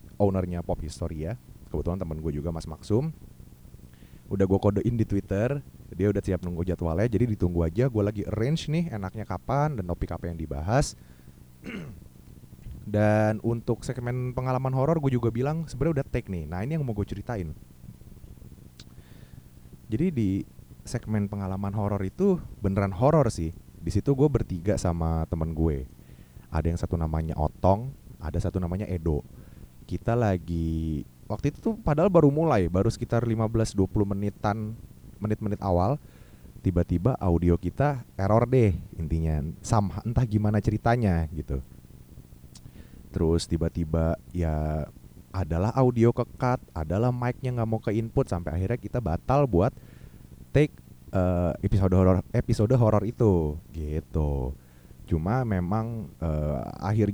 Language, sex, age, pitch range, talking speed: Indonesian, male, 20-39, 85-115 Hz, 140 wpm